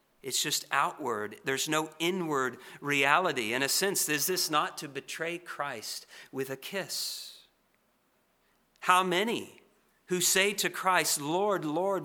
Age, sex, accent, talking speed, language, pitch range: 50-69, male, American, 135 wpm, English, 125-175 Hz